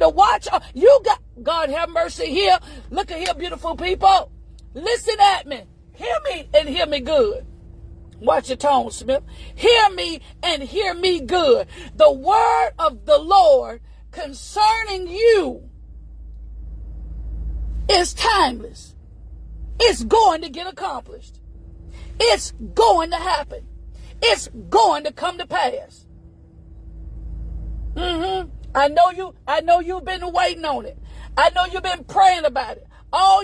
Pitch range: 290-390 Hz